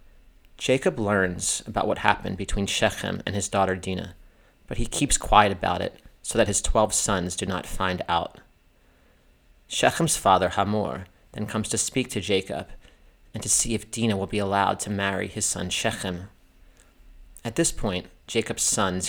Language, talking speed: English, 165 wpm